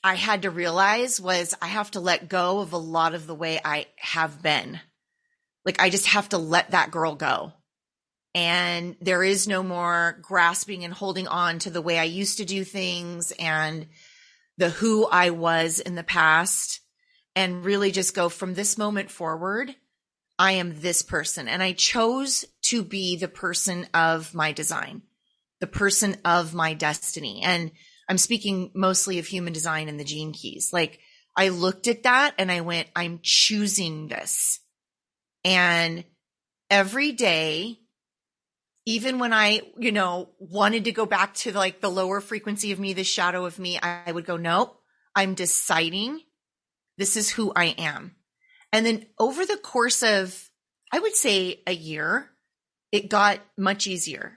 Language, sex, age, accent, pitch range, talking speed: English, female, 30-49, American, 170-210 Hz, 165 wpm